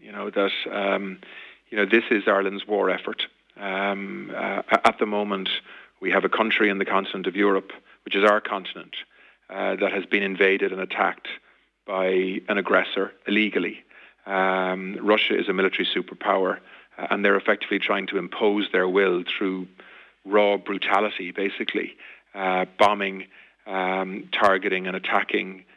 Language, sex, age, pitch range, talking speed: English, male, 30-49, 95-105 Hz, 150 wpm